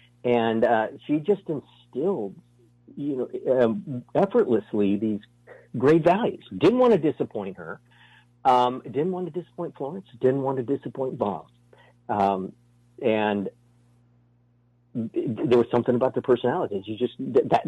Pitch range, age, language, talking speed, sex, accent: 105-140 Hz, 50-69, English, 130 wpm, male, American